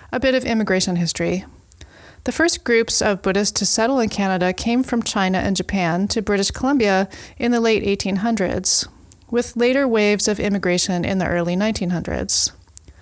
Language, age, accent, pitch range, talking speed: English, 30-49, American, 175-225 Hz, 160 wpm